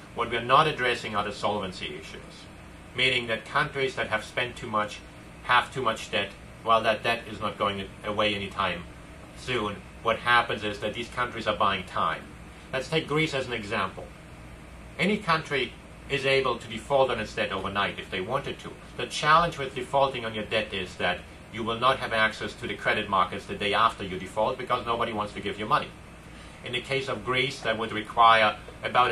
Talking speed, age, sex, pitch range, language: 205 wpm, 40-59, male, 100-125 Hz, English